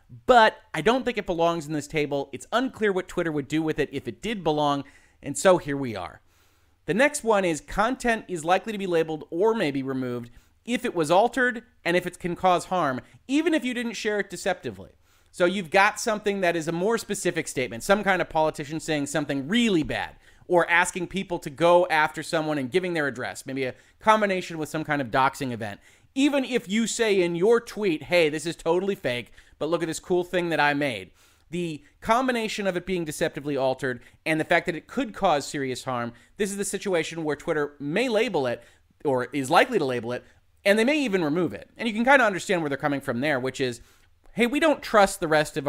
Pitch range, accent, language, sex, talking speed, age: 130-195 Hz, American, English, male, 225 wpm, 30-49